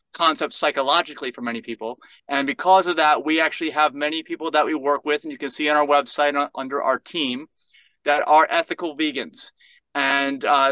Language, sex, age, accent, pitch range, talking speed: Swedish, male, 30-49, American, 145-180 Hz, 195 wpm